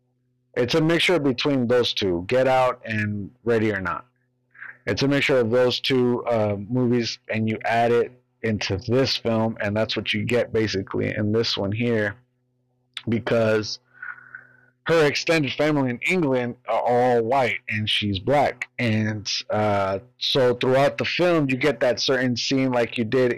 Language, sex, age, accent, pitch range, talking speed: English, male, 30-49, American, 110-125 Hz, 160 wpm